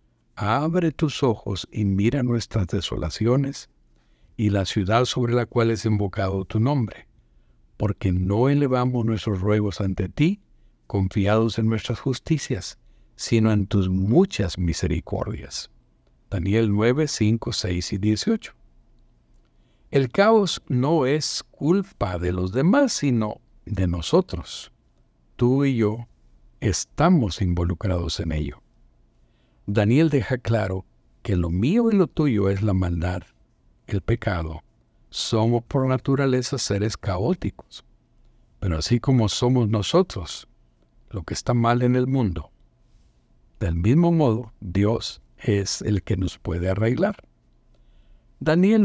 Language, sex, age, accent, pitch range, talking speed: Spanish, male, 60-79, Mexican, 95-130 Hz, 120 wpm